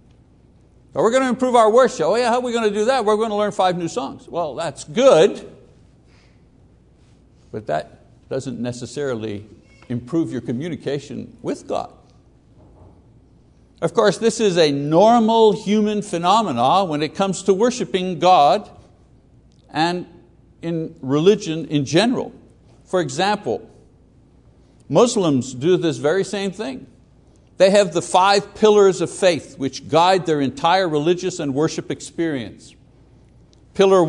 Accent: American